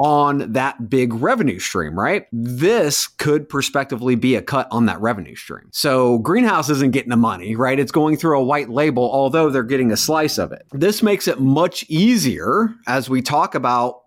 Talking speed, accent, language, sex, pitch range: 190 wpm, American, English, male, 120-155 Hz